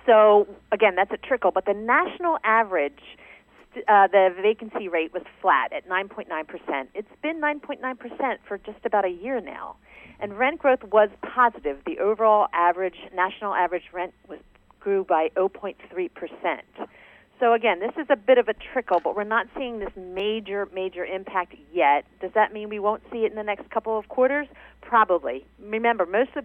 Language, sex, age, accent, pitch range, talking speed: English, female, 40-59, American, 180-240 Hz, 170 wpm